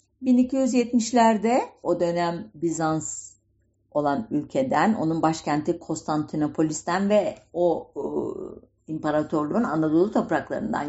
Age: 50-69